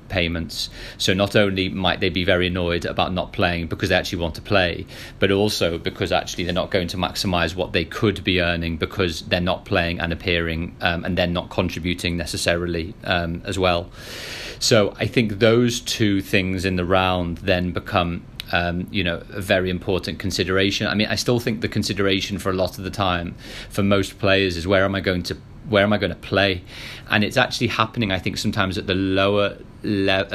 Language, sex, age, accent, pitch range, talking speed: English, male, 30-49, British, 90-105 Hz, 205 wpm